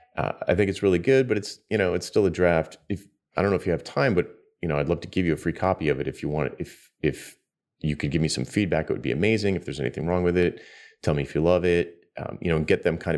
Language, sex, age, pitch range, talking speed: English, male, 30-49, 75-95 Hz, 315 wpm